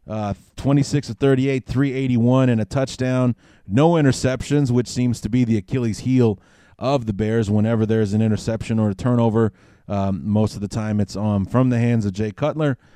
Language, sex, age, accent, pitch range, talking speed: English, male, 30-49, American, 100-130 Hz, 210 wpm